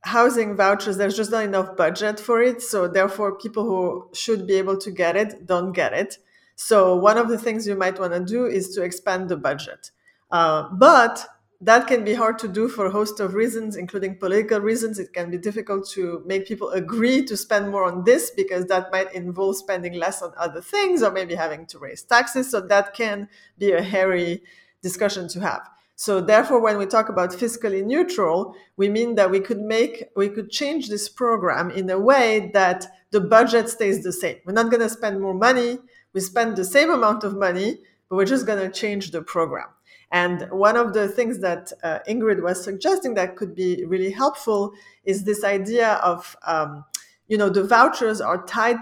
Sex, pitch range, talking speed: female, 185-225 Hz, 205 wpm